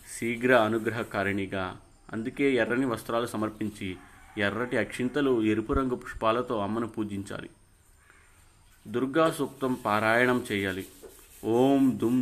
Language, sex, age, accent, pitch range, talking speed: Telugu, male, 30-49, native, 105-125 Hz, 95 wpm